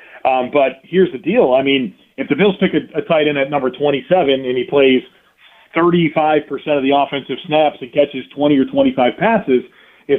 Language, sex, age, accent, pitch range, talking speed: English, male, 40-59, American, 135-160 Hz, 195 wpm